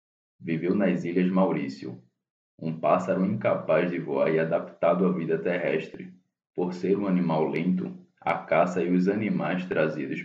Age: 20-39